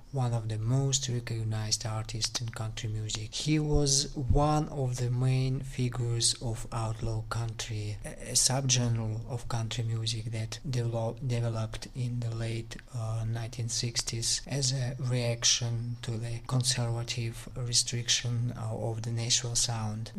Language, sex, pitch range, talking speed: English, male, 115-130 Hz, 130 wpm